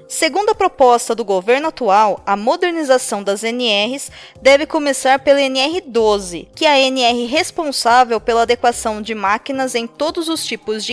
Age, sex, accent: 20-39, female, Brazilian